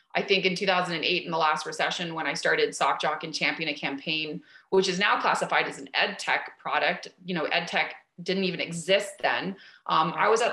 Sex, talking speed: female, 210 wpm